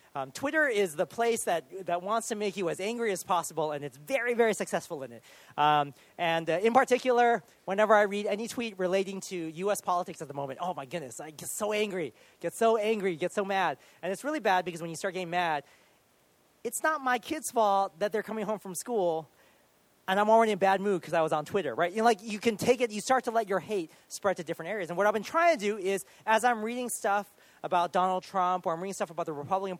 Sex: male